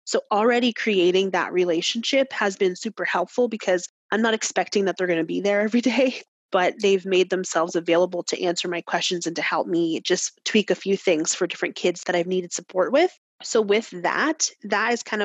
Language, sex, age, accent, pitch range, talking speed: English, female, 30-49, American, 175-210 Hz, 210 wpm